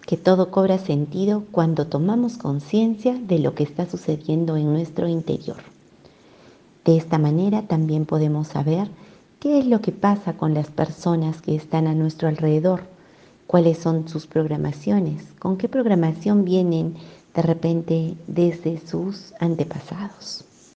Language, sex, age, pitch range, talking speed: Spanish, female, 40-59, 160-200 Hz, 135 wpm